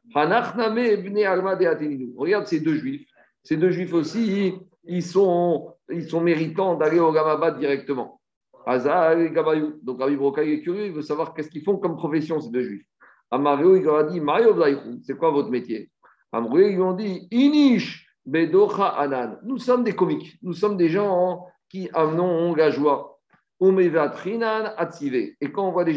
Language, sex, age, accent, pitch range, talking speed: French, male, 50-69, French, 140-185 Hz, 150 wpm